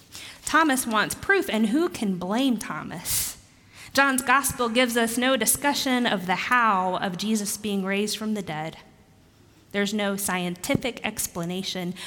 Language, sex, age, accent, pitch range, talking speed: English, female, 20-39, American, 200-250 Hz, 140 wpm